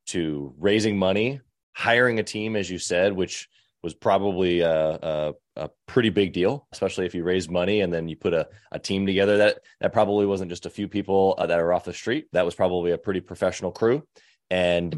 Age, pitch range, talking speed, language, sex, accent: 20-39, 95-125 Hz, 210 wpm, English, male, American